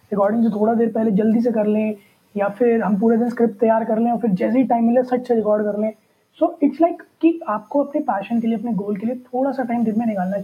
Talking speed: 275 wpm